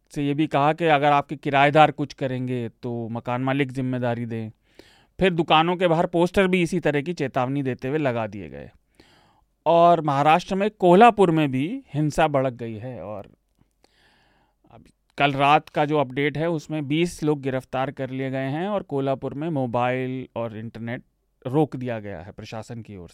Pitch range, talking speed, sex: 125-155 Hz, 180 wpm, male